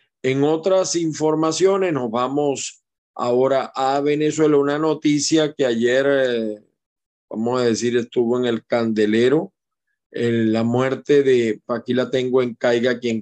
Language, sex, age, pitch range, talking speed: Spanish, male, 40-59, 120-160 Hz, 135 wpm